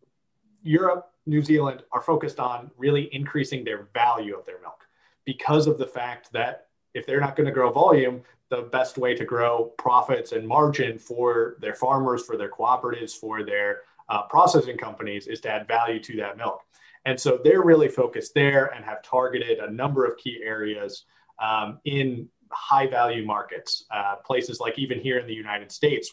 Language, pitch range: English, 115-160 Hz